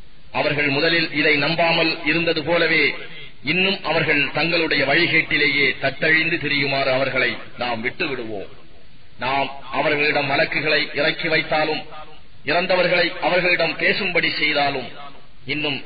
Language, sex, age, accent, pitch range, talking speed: English, male, 30-49, Indian, 135-160 Hz, 100 wpm